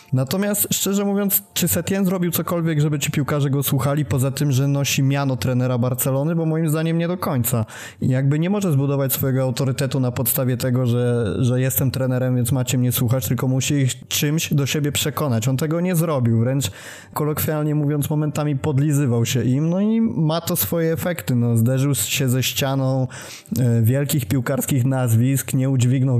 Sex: male